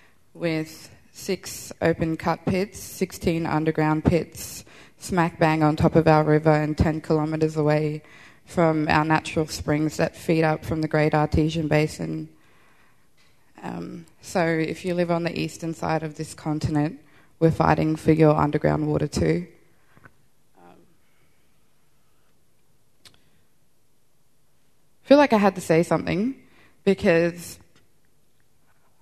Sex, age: female, 20-39